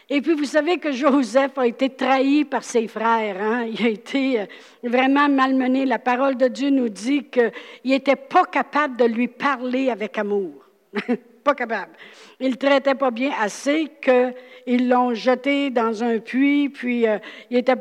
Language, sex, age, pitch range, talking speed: French, female, 60-79, 235-265 Hz, 170 wpm